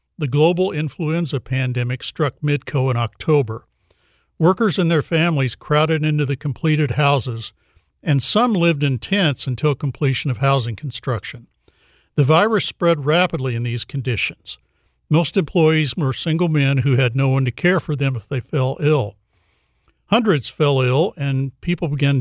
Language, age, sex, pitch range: English, 60-79, male, 130-155 Hz